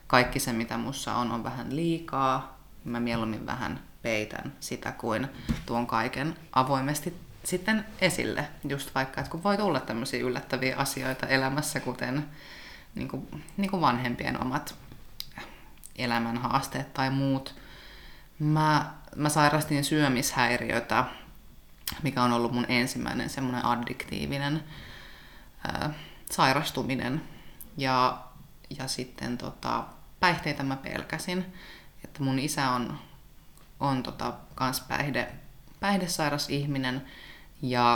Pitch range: 125-155 Hz